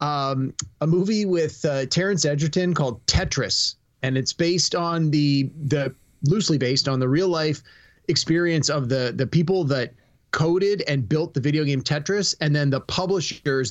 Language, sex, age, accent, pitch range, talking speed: English, male, 30-49, American, 130-175 Hz, 165 wpm